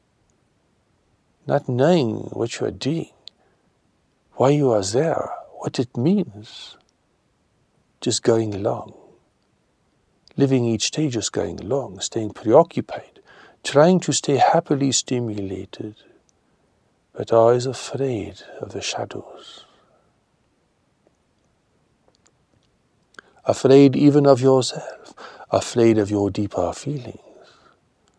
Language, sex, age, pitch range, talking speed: English, male, 60-79, 105-135 Hz, 95 wpm